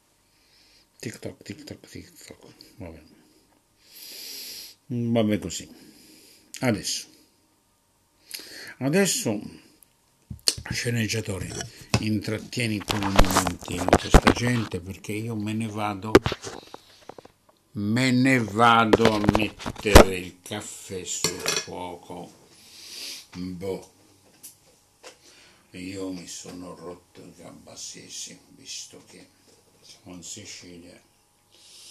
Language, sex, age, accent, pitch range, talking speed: Italian, male, 60-79, native, 95-115 Hz, 90 wpm